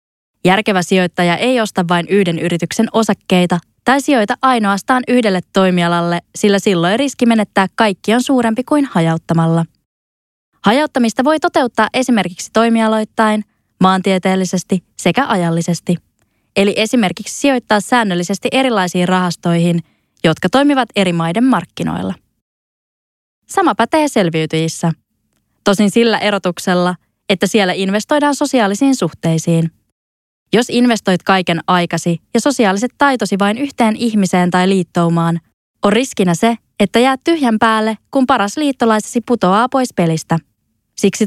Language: Finnish